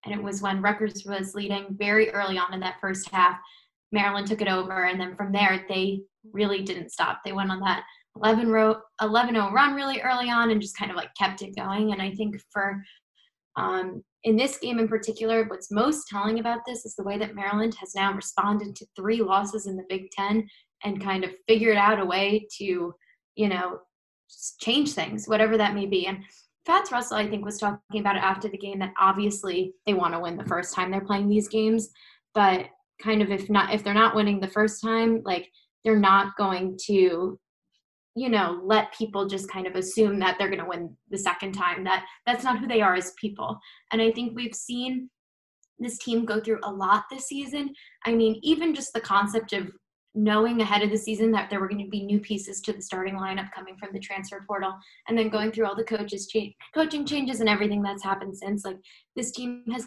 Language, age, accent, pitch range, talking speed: English, 10-29, American, 195-225 Hz, 215 wpm